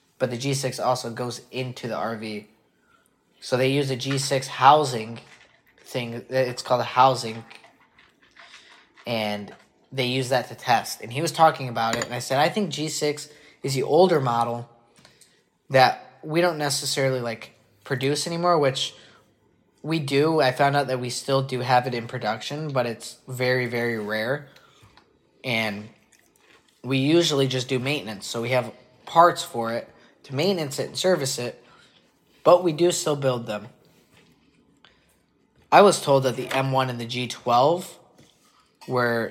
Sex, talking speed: male, 155 wpm